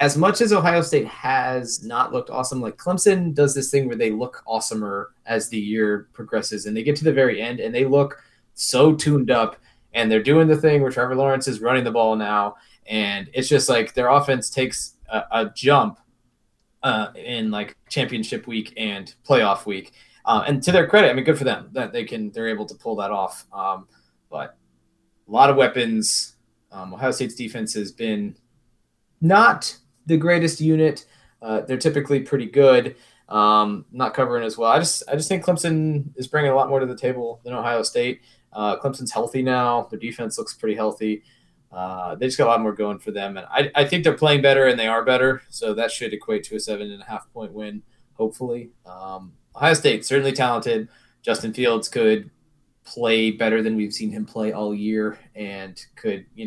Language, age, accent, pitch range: English, 20-39, American, 110-140 Hz